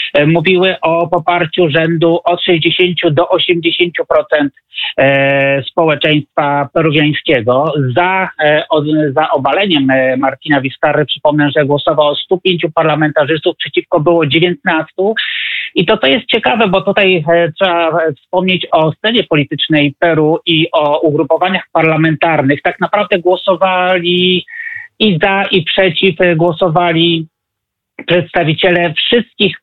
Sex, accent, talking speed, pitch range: male, native, 100 wpm, 155-180 Hz